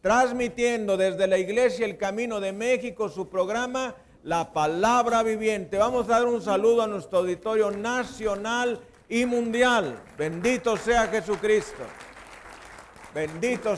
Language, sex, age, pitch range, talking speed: Spanish, male, 50-69, 170-220 Hz, 120 wpm